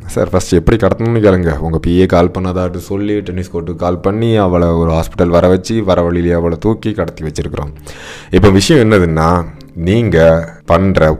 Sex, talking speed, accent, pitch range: male, 145 wpm, native, 85-100 Hz